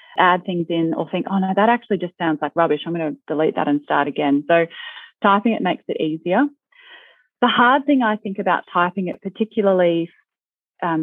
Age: 30-49